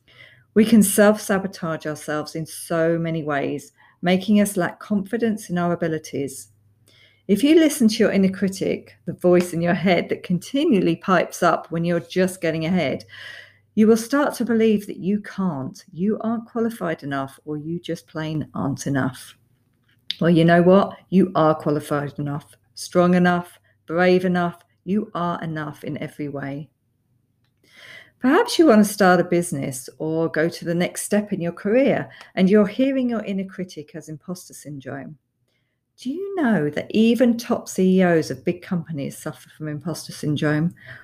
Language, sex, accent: English, female, British